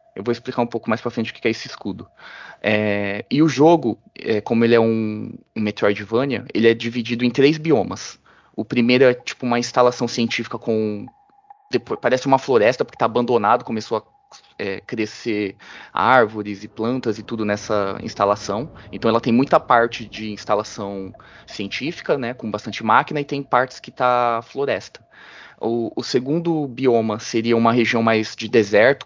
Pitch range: 110-135 Hz